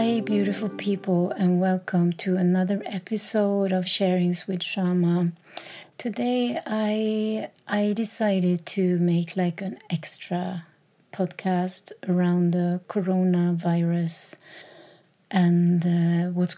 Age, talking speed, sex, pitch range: 30-49, 100 wpm, female, 175-200 Hz